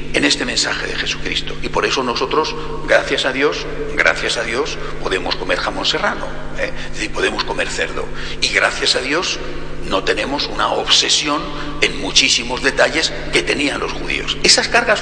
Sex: male